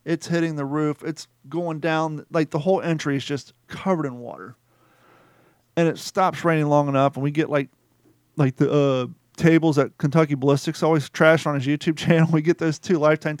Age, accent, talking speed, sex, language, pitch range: 40-59, American, 195 wpm, male, English, 140-170 Hz